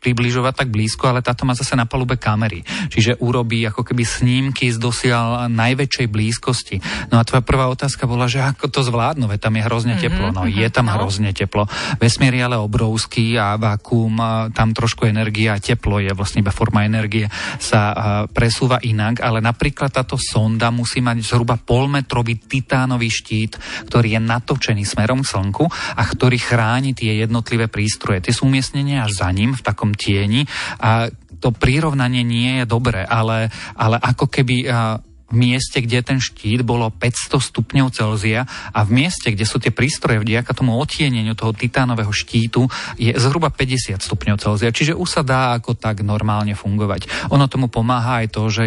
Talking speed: 170 wpm